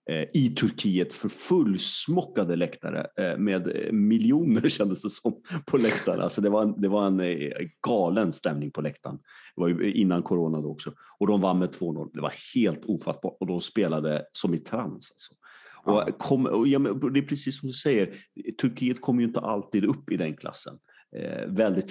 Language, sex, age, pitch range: Swedish, male, 30-49, 80-135 Hz